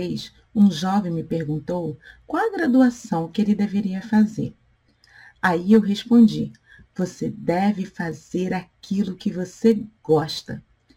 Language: Portuguese